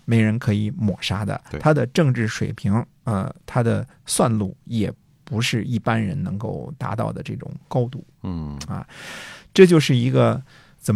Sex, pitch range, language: male, 105-135 Hz, Chinese